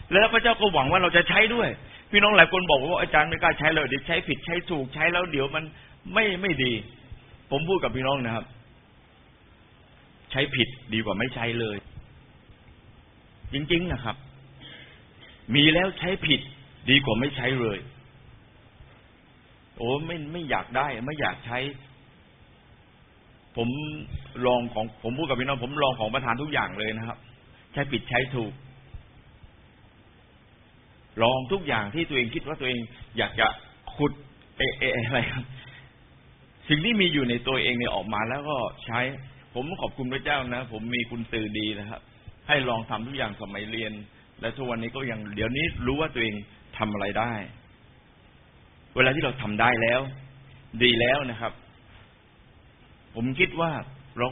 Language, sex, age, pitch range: Thai, male, 60-79, 115-145 Hz